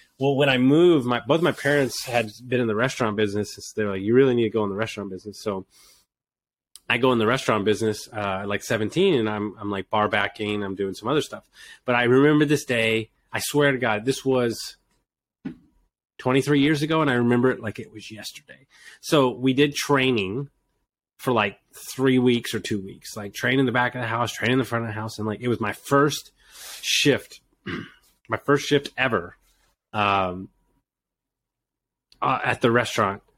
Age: 30-49